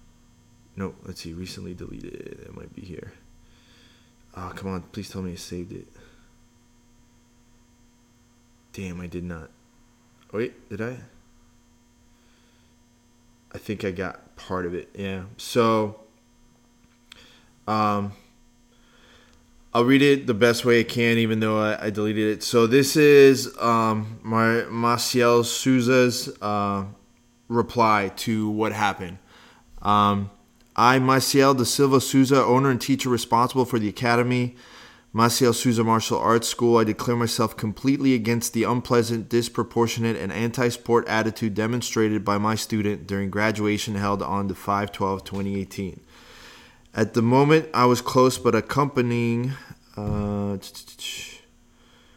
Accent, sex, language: American, male, English